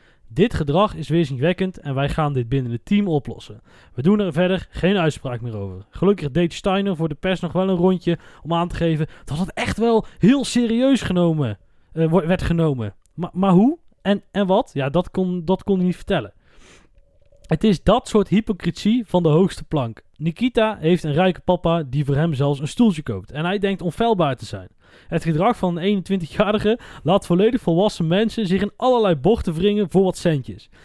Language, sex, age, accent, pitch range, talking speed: Dutch, male, 20-39, Dutch, 155-205 Hz, 200 wpm